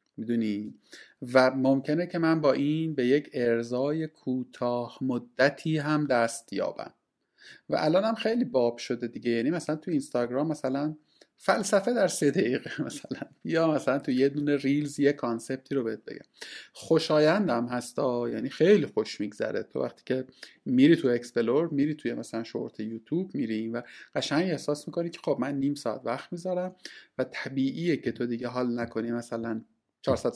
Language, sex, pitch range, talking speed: Persian, male, 120-155 Hz, 160 wpm